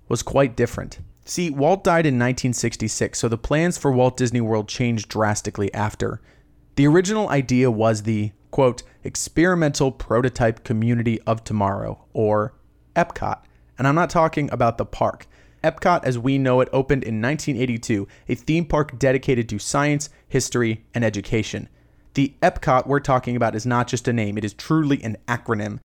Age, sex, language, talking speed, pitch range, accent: 30-49, male, English, 160 wpm, 110-140 Hz, American